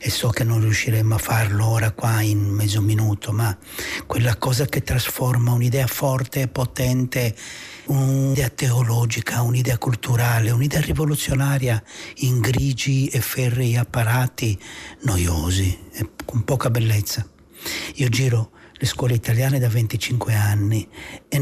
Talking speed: 130 wpm